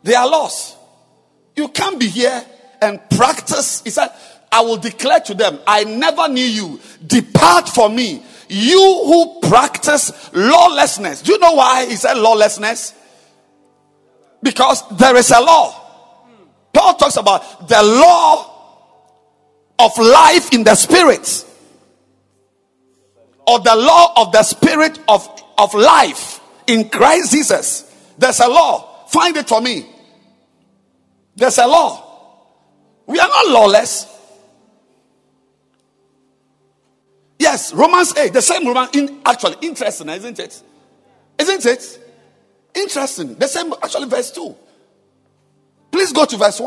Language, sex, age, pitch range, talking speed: English, male, 50-69, 210-295 Hz, 125 wpm